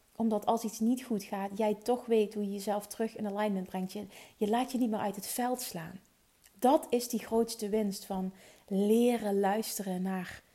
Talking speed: 200 wpm